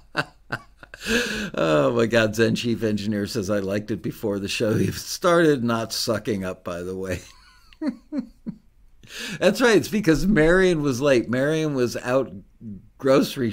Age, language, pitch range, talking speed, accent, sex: 60-79, English, 110-165 Hz, 140 wpm, American, male